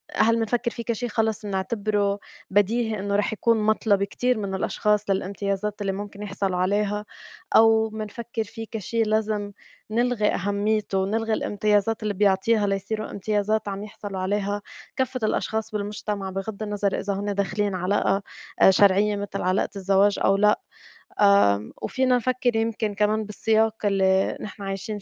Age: 20-39